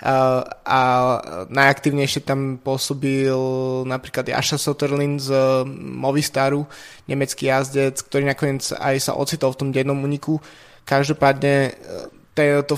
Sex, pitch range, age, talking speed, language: male, 135-145 Hz, 20-39, 105 wpm, Slovak